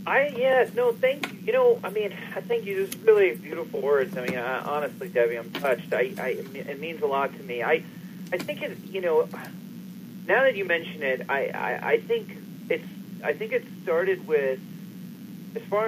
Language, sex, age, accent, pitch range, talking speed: English, male, 40-59, American, 150-230 Hz, 205 wpm